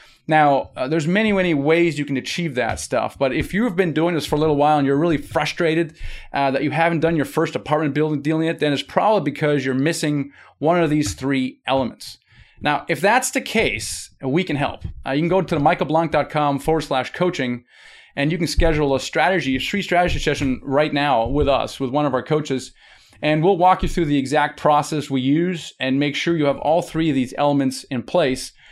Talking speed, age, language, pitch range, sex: 220 wpm, 30-49, English, 135-165 Hz, male